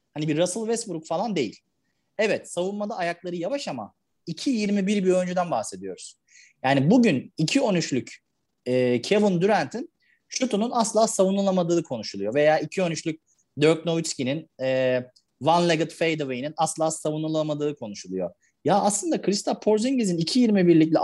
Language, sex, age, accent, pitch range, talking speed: Turkish, male, 30-49, native, 135-205 Hz, 120 wpm